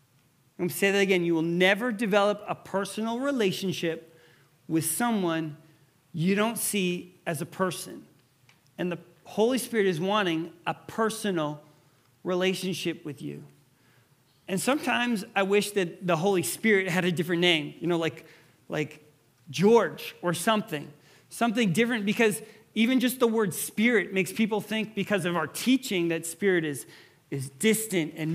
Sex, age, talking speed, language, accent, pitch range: male, 40-59, 150 wpm, English, American, 155-205 Hz